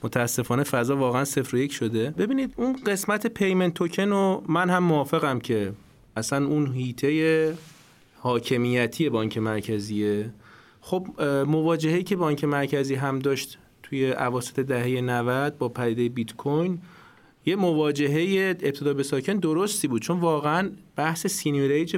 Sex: male